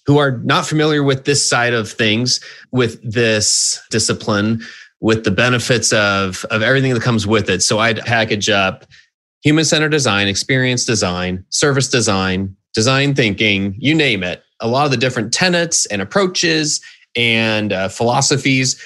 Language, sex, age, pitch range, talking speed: English, male, 30-49, 110-135 Hz, 155 wpm